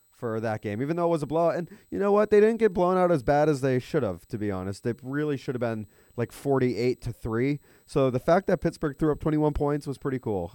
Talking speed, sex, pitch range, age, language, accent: 275 wpm, male, 105-145 Hz, 20-39, English, American